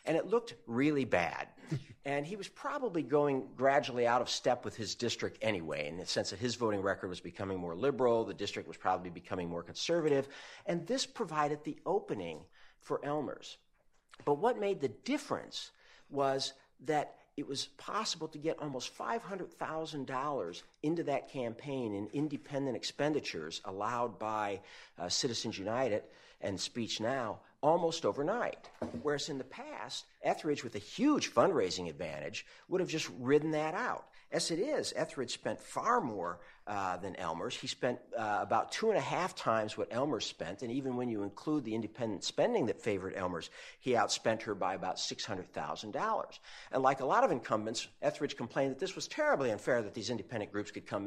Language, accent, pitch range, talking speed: English, American, 115-155 Hz, 175 wpm